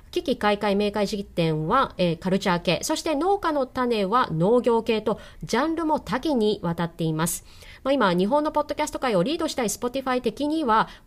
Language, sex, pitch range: Japanese, female, 190-310 Hz